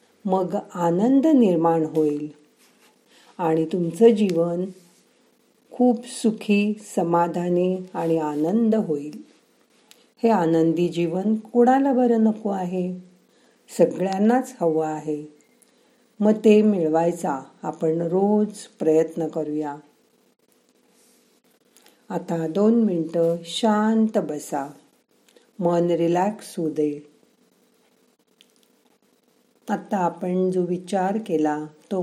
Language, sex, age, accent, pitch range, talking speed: Marathi, female, 50-69, native, 165-230 Hz, 80 wpm